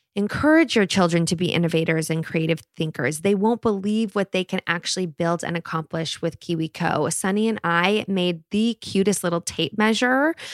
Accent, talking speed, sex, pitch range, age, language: American, 170 wpm, female, 170-205 Hz, 20-39, English